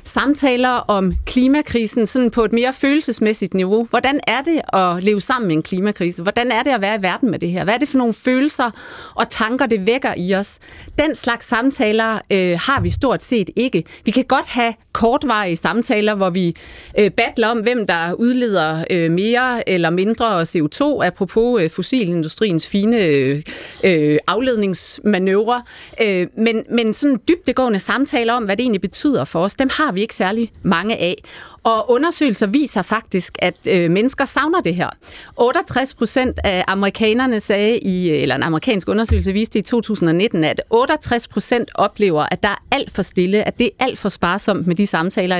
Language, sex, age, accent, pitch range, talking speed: Danish, female, 30-49, native, 190-245 Hz, 180 wpm